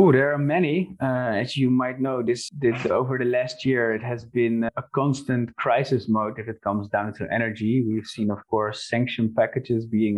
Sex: male